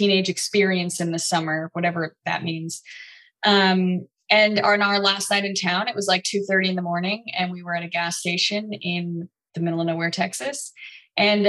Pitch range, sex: 175-200 Hz, female